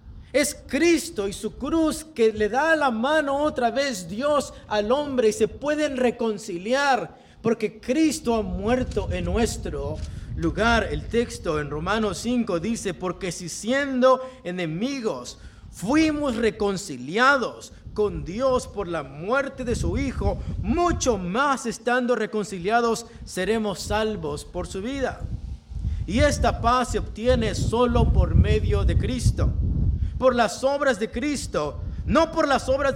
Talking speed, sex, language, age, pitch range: 135 wpm, male, English, 50-69, 220-290 Hz